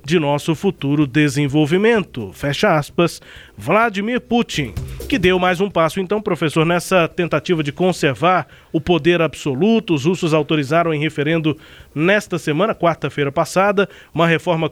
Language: Portuguese